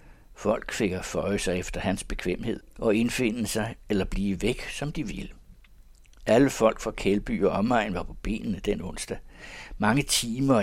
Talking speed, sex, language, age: 170 wpm, male, Danish, 60-79